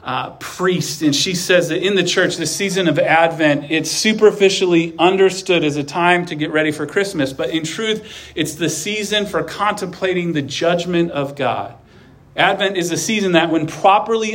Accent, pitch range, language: American, 150-190 Hz, English